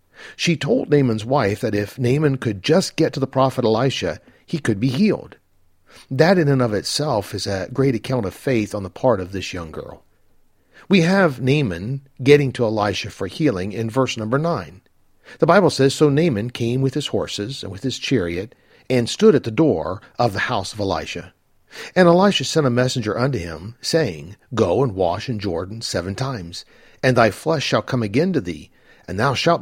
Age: 50-69